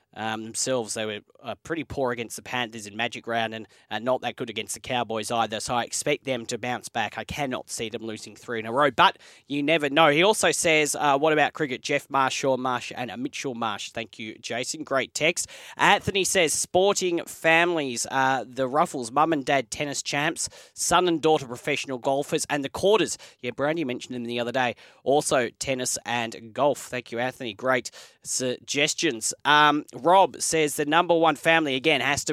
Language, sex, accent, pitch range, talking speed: English, male, Australian, 120-150 Hz, 200 wpm